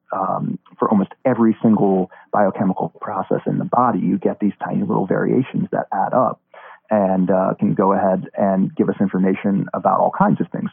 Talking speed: 185 wpm